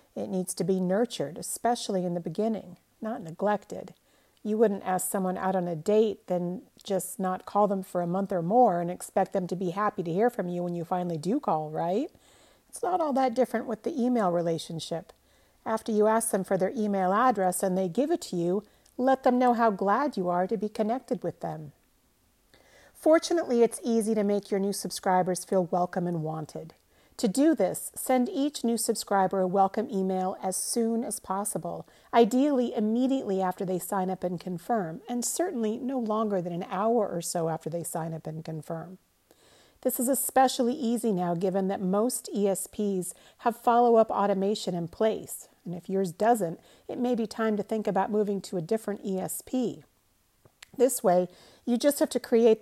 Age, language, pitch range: 50-69, English, 185-235 Hz